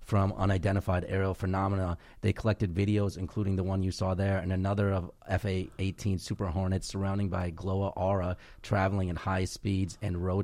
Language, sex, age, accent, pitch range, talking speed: English, male, 30-49, American, 95-110 Hz, 170 wpm